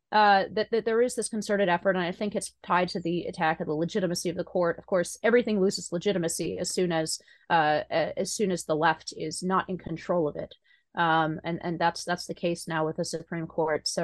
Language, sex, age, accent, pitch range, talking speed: English, female, 30-49, American, 170-205 Hz, 235 wpm